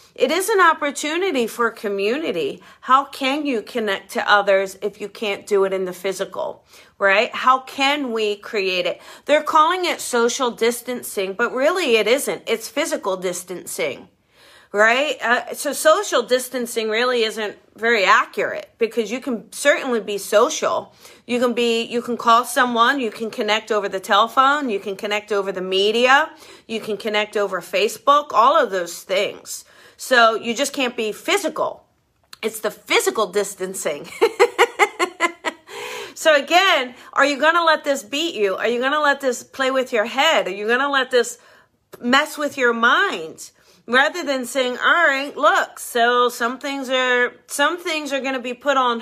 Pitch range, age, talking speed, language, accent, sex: 220-295 Hz, 40-59, 165 wpm, English, American, female